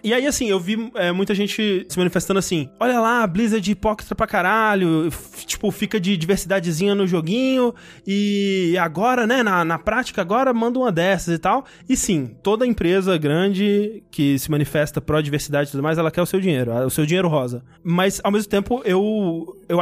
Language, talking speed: Portuguese, 185 wpm